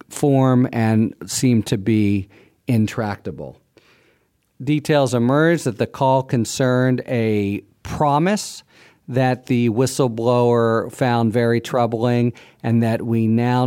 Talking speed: 105 wpm